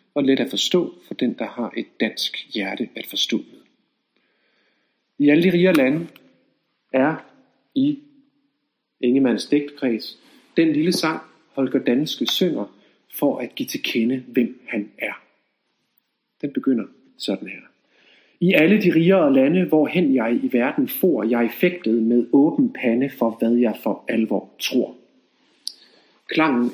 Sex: male